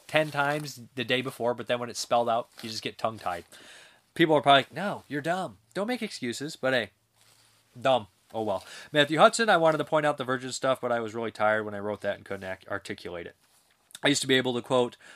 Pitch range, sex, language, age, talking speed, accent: 115-140 Hz, male, English, 30-49, 245 wpm, American